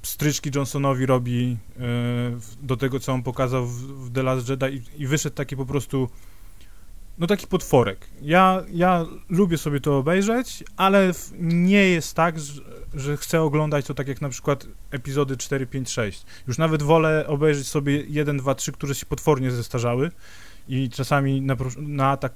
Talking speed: 165 wpm